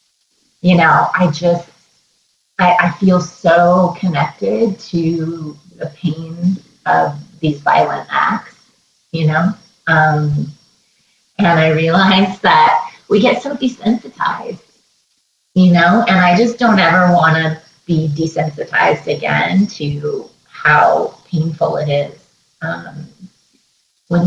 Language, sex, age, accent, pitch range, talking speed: English, female, 30-49, American, 150-195 Hz, 115 wpm